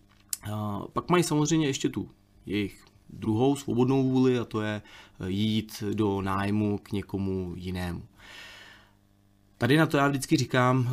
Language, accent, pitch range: Czech, native, 100-120 Hz